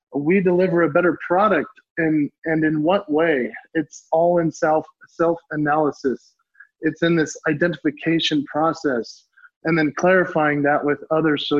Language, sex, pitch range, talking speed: English, male, 145-170 Hz, 140 wpm